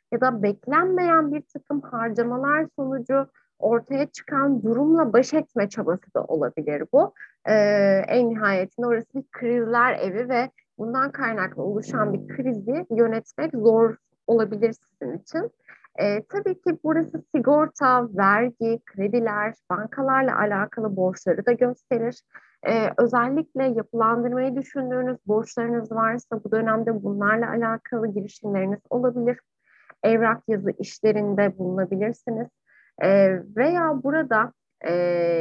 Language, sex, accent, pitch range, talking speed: Turkish, female, native, 205-255 Hz, 110 wpm